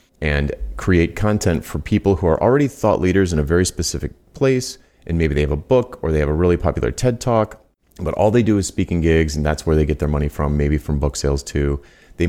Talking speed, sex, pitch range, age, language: 245 wpm, male, 75-90 Hz, 30-49, English